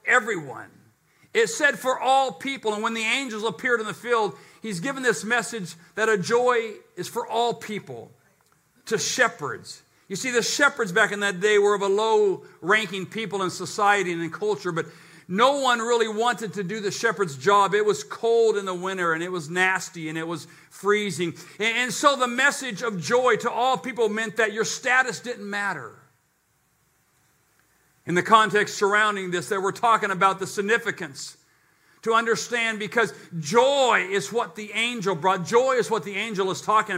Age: 50-69